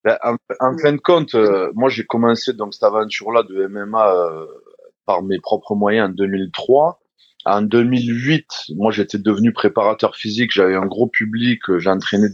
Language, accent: French, French